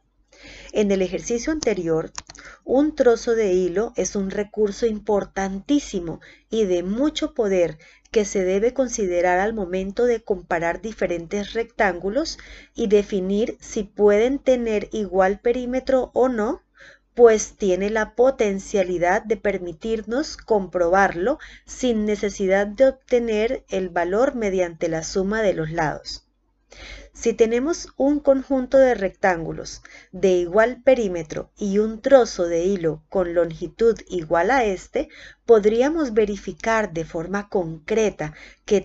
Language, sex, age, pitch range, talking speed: Spanish, female, 30-49, 185-240 Hz, 120 wpm